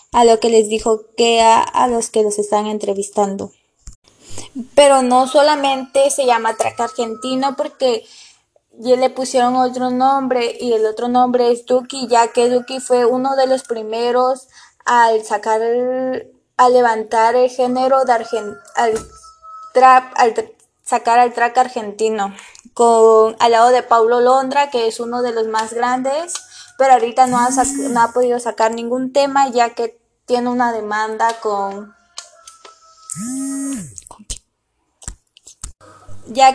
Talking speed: 145 wpm